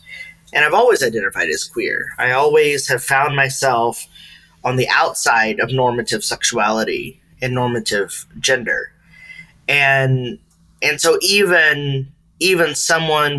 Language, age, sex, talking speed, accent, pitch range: English, 30-49, male, 115 wpm, American, 105-150 Hz